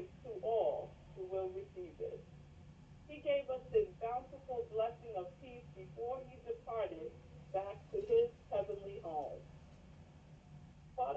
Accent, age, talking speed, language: American, 40-59, 125 wpm, English